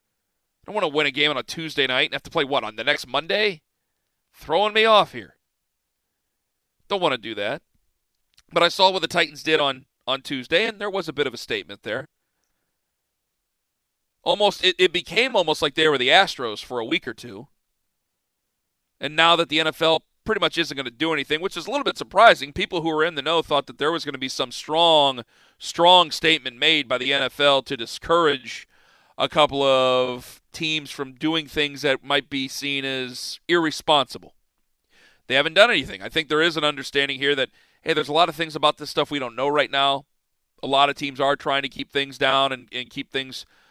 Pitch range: 140-165 Hz